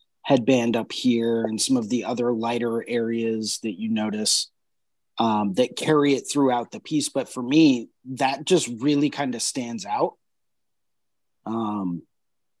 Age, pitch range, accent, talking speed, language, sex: 30-49, 115-145 Hz, American, 150 wpm, English, male